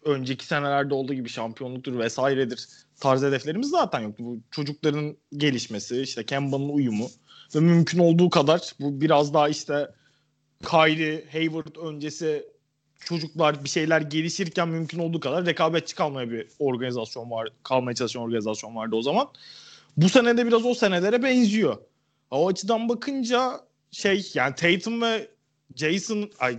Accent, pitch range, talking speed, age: native, 130-175 Hz, 135 wpm, 30-49